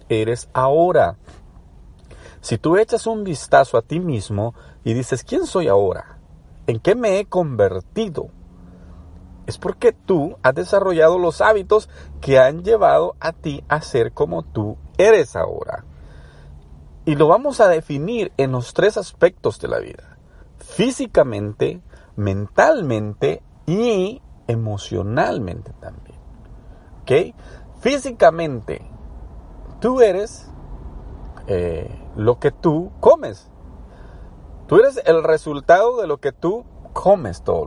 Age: 50-69